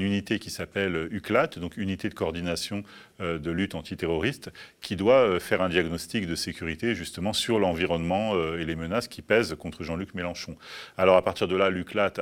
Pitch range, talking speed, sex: 80-95 Hz, 170 wpm, male